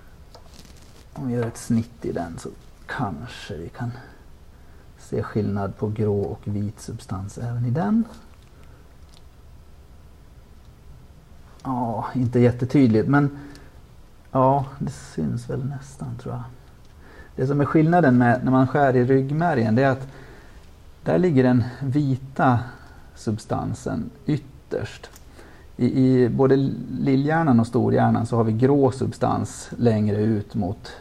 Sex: male